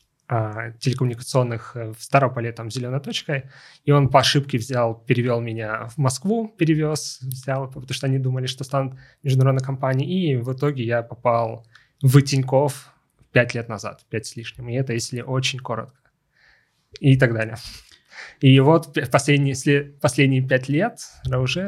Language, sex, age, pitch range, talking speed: Russian, male, 20-39, 125-140 Hz, 145 wpm